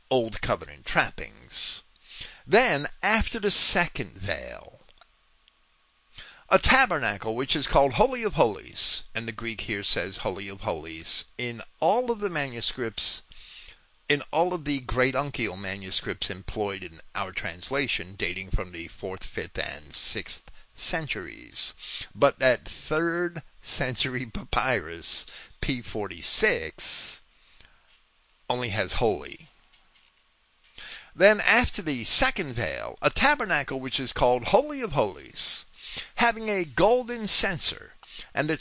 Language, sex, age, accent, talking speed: English, male, 50-69, American, 120 wpm